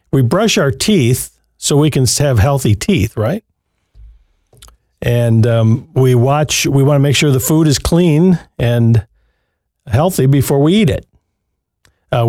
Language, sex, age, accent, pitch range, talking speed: English, male, 50-69, American, 120-150 Hz, 150 wpm